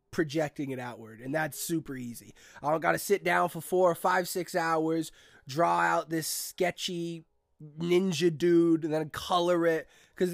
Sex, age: male, 20-39